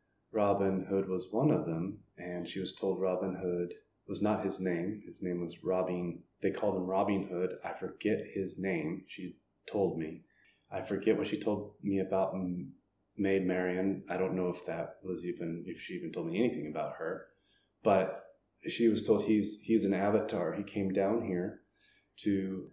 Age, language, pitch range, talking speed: 30-49, English, 90-100 Hz, 180 wpm